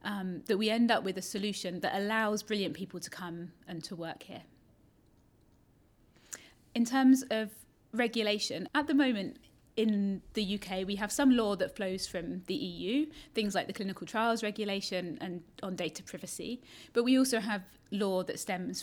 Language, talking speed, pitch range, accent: English, 170 wpm, 185-230 Hz, British